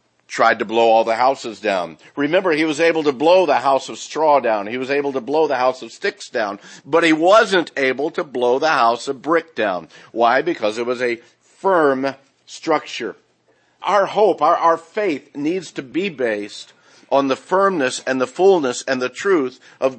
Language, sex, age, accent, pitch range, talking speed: English, male, 50-69, American, 125-160 Hz, 195 wpm